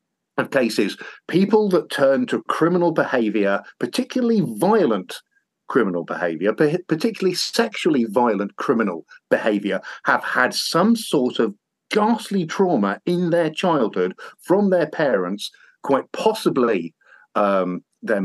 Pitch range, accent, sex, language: 125-210 Hz, British, male, English